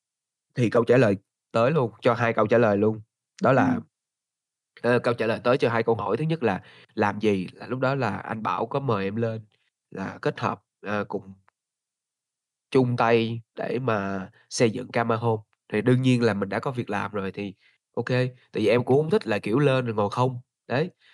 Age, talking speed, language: 20-39, 205 wpm, Vietnamese